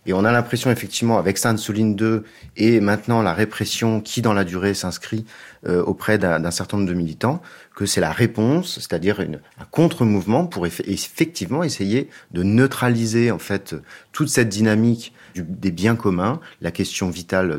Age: 40-59